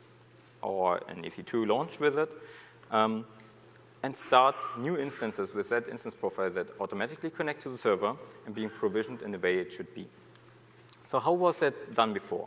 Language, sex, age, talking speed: English, male, 40-59, 170 wpm